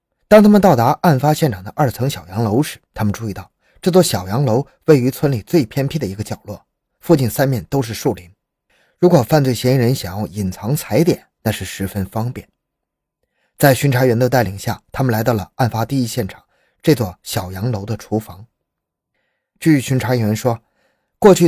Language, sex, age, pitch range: Chinese, male, 20-39, 105-150 Hz